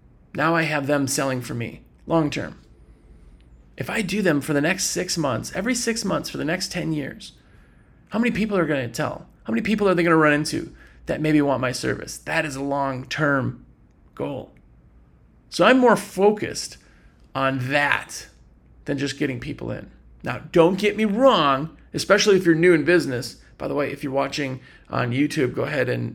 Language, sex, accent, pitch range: English, male, American, 135-180 Hz